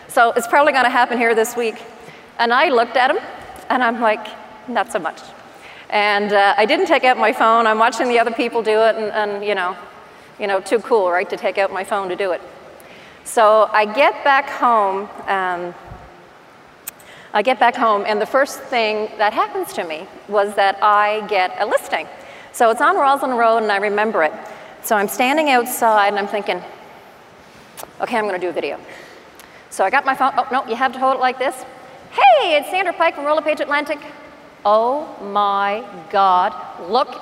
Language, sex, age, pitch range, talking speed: English, female, 40-59, 215-275 Hz, 200 wpm